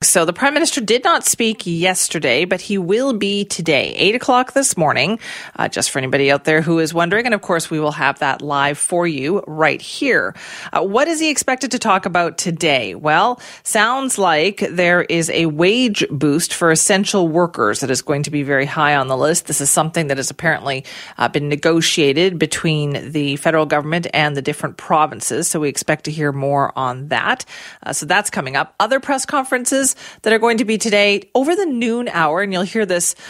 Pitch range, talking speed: 155-205 Hz, 205 wpm